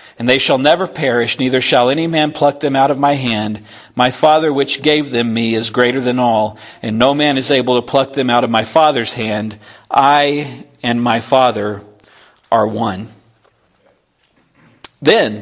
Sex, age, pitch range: male, 40-59, 125-185 Hz